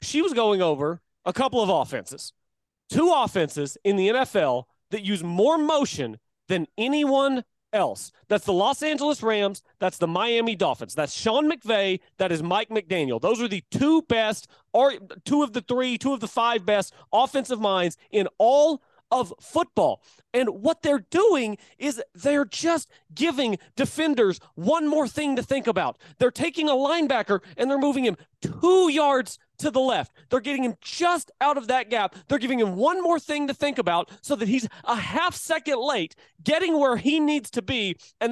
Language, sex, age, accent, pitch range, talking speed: English, male, 30-49, American, 205-290 Hz, 180 wpm